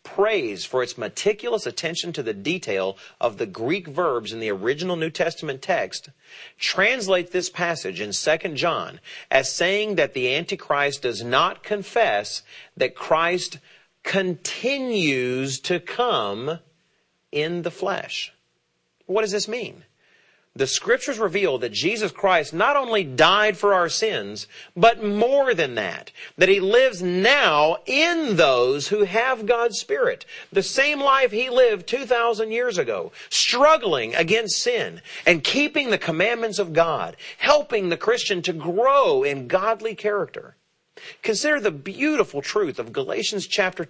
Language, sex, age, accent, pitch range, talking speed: English, male, 40-59, American, 160-240 Hz, 140 wpm